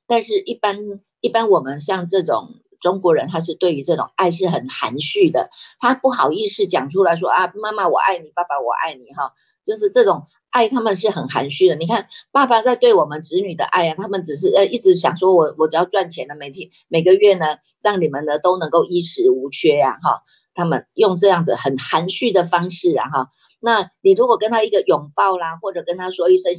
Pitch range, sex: 160-230 Hz, female